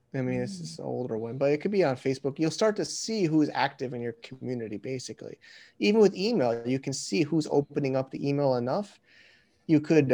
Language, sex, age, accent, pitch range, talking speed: English, male, 30-49, American, 130-165 Hz, 220 wpm